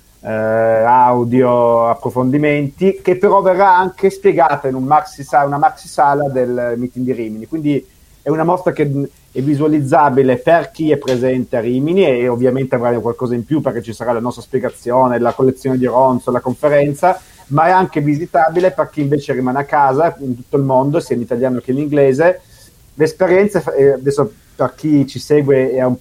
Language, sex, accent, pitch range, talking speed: Italian, male, native, 125-155 Hz, 180 wpm